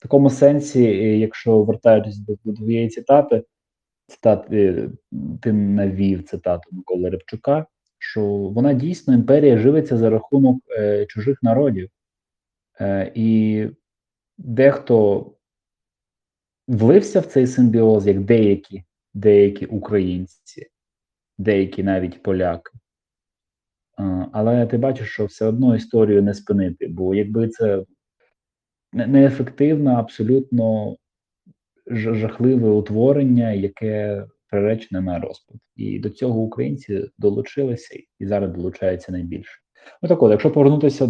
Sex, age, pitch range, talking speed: male, 20-39, 100-120 Hz, 100 wpm